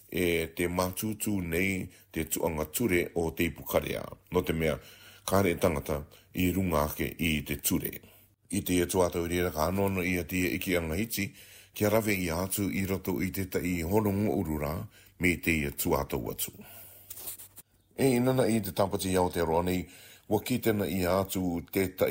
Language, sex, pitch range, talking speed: English, male, 85-100 Hz, 145 wpm